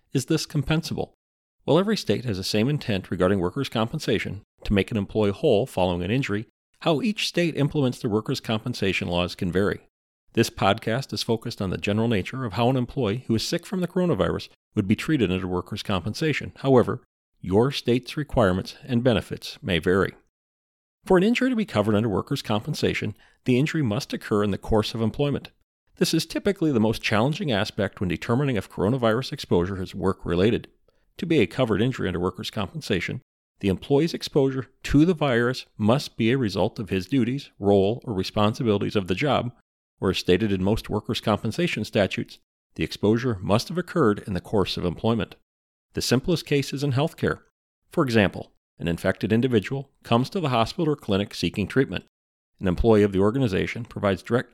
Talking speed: 185 wpm